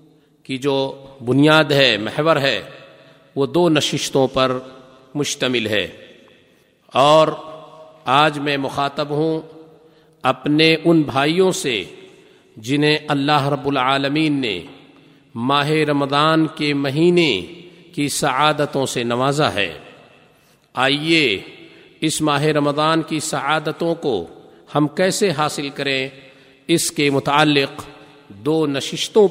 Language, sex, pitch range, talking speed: Urdu, male, 140-160 Hz, 105 wpm